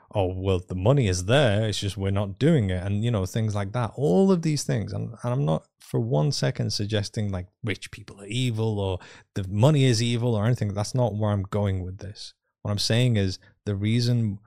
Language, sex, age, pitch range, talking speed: English, male, 20-39, 95-120 Hz, 230 wpm